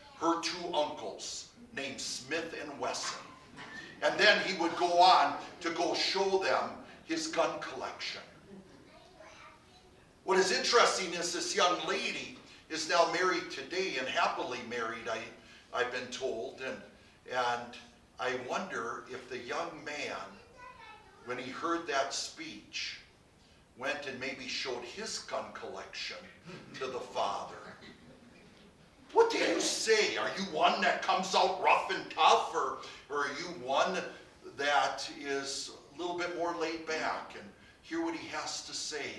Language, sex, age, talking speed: English, male, 60-79, 145 wpm